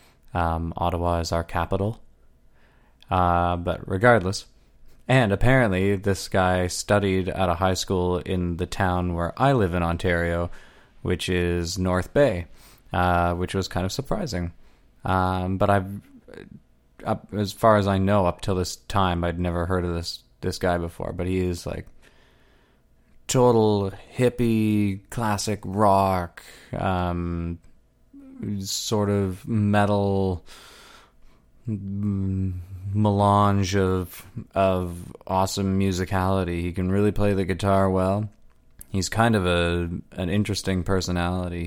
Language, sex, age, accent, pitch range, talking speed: English, male, 20-39, American, 85-100 Hz, 125 wpm